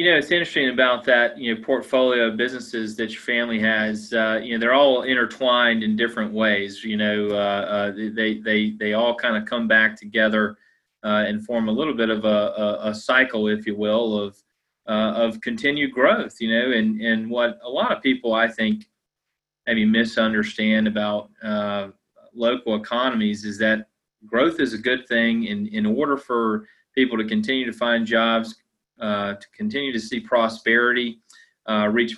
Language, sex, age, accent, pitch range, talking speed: English, male, 30-49, American, 110-125 Hz, 180 wpm